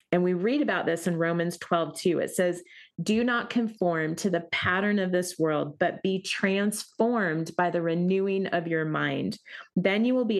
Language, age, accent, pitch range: English, 30-49, American, 175-210 Hz